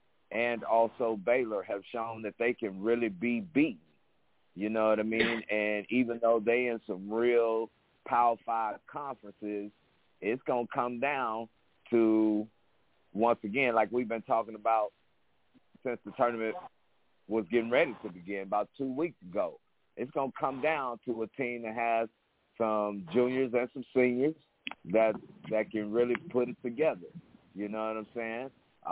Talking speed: 160 wpm